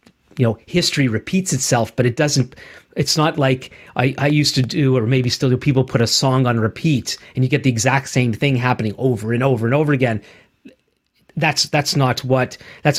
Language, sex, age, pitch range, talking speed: English, male, 40-59, 120-145 Hz, 210 wpm